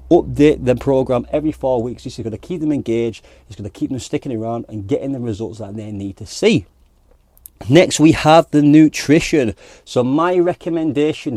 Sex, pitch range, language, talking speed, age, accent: male, 110-145 Hz, English, 195 wpm, 30-49, British